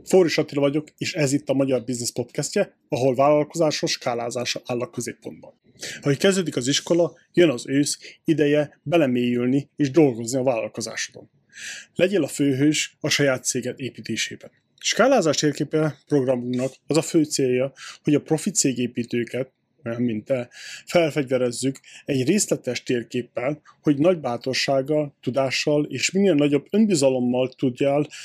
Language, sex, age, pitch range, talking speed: Hungarian, male, 30-49, 130-160 Hz, 135 wpm